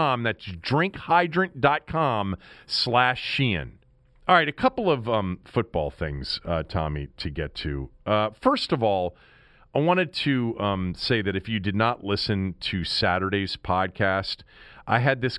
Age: 40-59